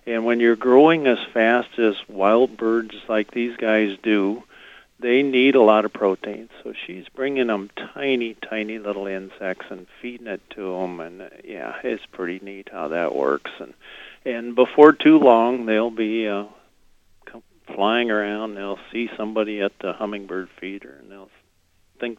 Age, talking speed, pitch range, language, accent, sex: 50-69, 165 wpm, 95-120 Hz, English, American, male